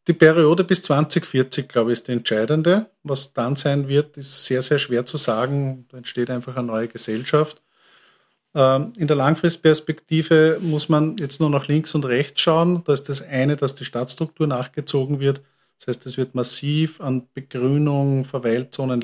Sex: male